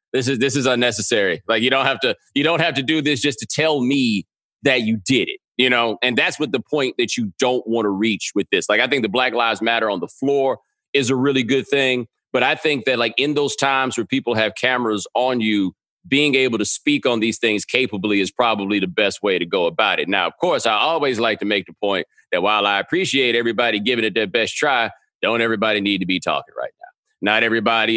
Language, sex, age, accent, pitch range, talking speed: English, male, 30-49, American, 110-145 Hz, 245 wpm